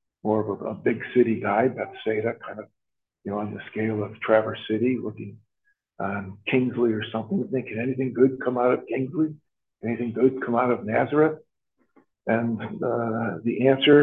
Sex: male